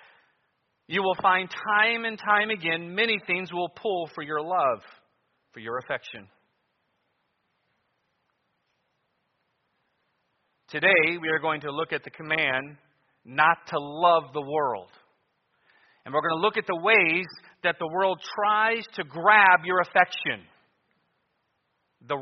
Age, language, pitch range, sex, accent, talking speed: 40-59, English, 150-190 Hz, male, American, 130 wpm